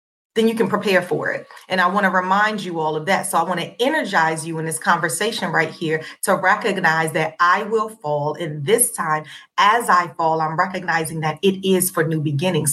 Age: 30-49